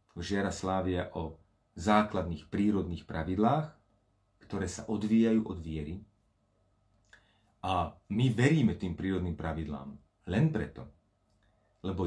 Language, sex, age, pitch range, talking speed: Slovak, male, 40-59, 95-120 Hz, 100 wpm